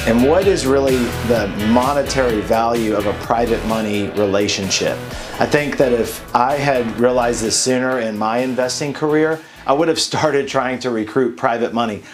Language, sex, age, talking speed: English, male, 40-59, 170 wpm